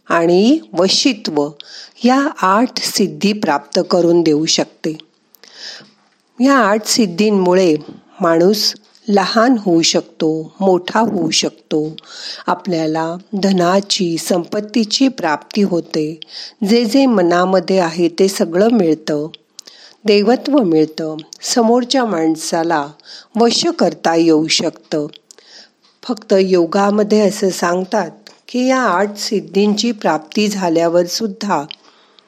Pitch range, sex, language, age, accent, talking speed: 165-230 Hz, female, Marathi, 50-69, native, 90 wpm